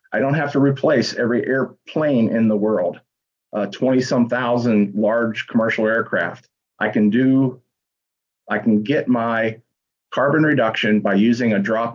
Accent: American